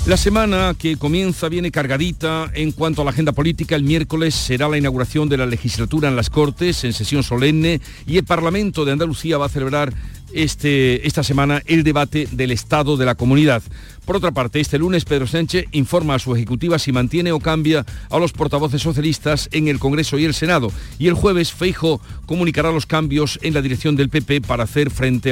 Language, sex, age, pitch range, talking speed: Spanish, male, 50-69, 130-160 Hz, 195 wpm